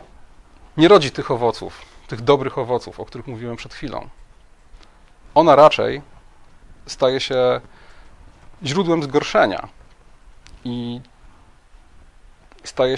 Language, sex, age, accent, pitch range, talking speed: Polish, male, 40-59, native, 120-155 Hz, 90 wpm